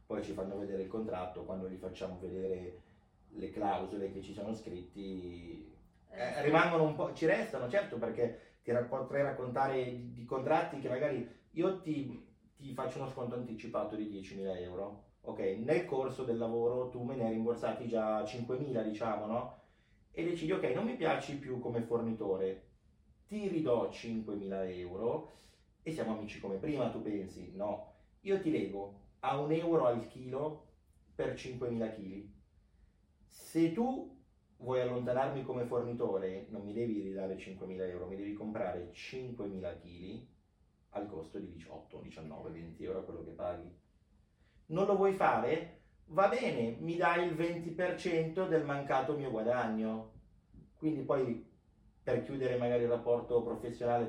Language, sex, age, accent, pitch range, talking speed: Italian, male, 30-49, native, 95-130 Hz, 155 wpm